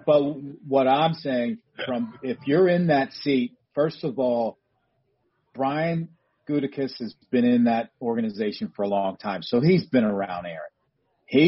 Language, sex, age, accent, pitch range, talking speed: English, male, 40-59, American, 120-165 Hz, 155 wpm